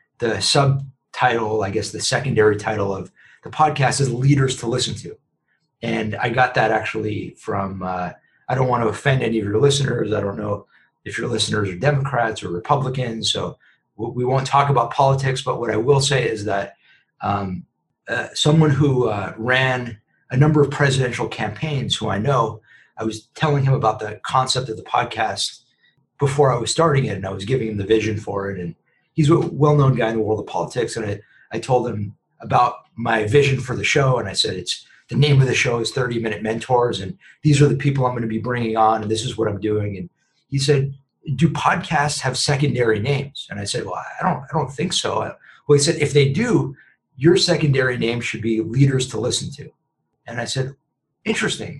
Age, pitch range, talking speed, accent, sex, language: 30-49, 110-145 Hz, 210 wpm, American, male, English